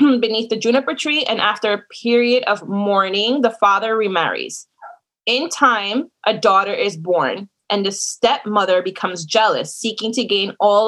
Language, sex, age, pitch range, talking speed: English, female, 20-39, 205-245 Hz, 155 wpm